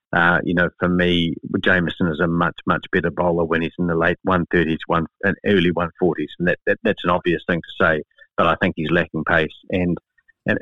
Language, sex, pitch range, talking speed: English, male, 85-95 Hz, 215 wpm